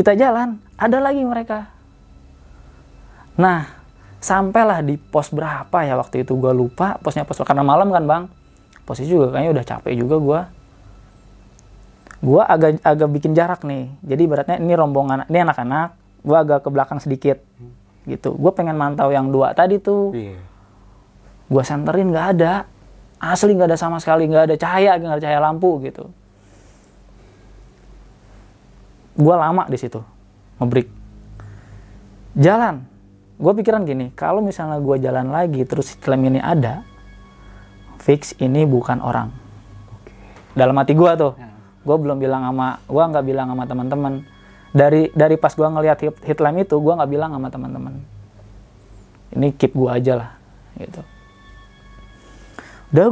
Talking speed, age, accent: 140 wpm, 20-39, native